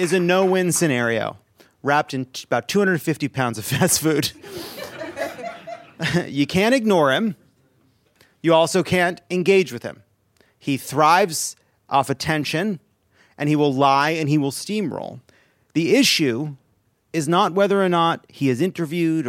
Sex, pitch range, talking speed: male, 120-170 Hz, 135 wpm